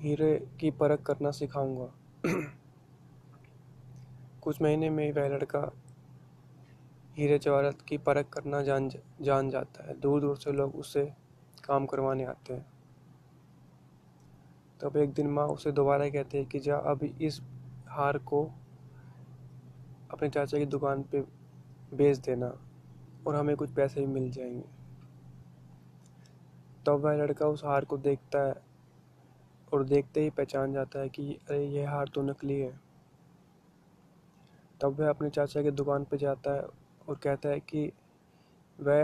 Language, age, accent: Marathi, 20-39, native